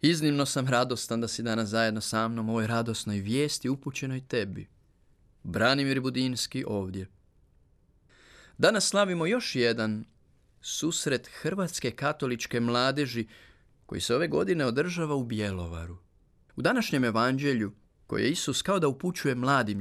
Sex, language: male, Croatian